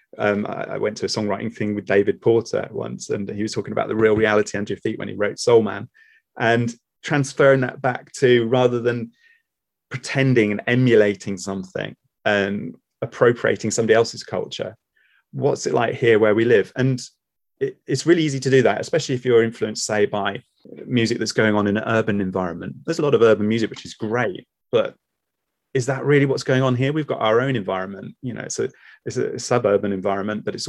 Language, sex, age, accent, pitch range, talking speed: English, male, 30-49, British, 105-125 Hz, 205 wpm